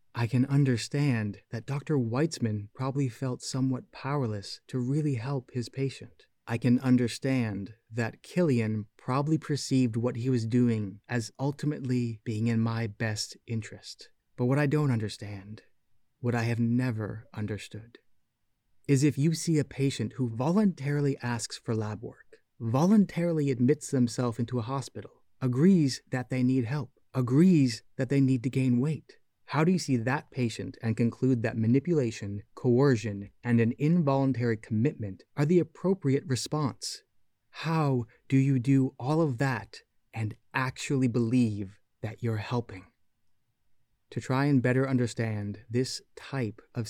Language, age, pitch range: English, 30-49, 115-135 Hz